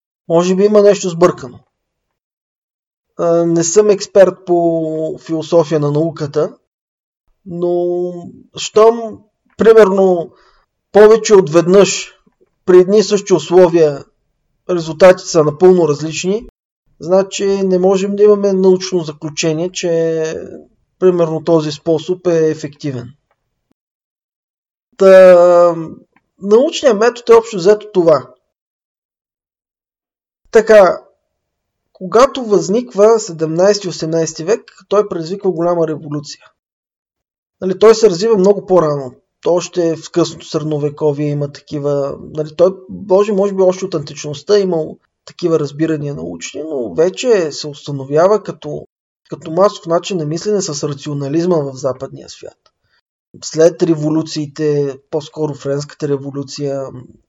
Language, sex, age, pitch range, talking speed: Bulgarian, male, 20-39, 150-190 Hz, 105 wpm